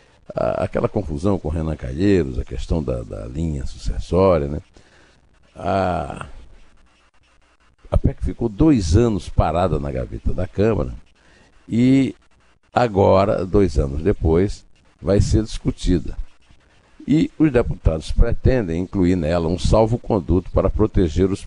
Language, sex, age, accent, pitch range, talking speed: Portuguese, male, 60-79, Brazilian, 75-100 Hz, 125 wpm